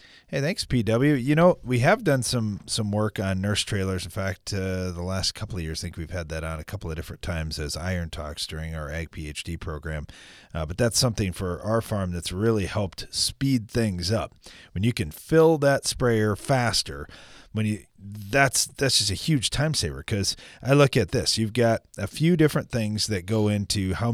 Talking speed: 210 wpm